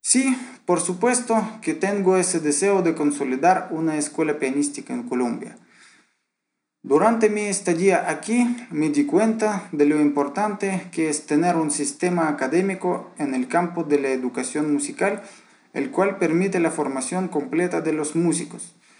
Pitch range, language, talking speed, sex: 160-205 Hz, Spanish, 145 wpm, male